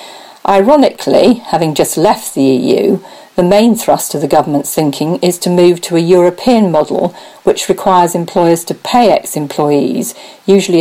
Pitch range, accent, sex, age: 155-200 Hz, British, female, 40-59